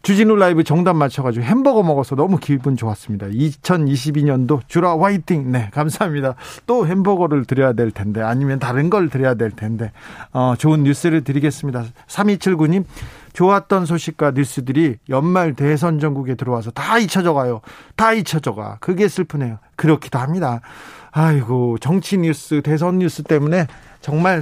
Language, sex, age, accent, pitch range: Korean, male, 40-59, native, 130-165 Hz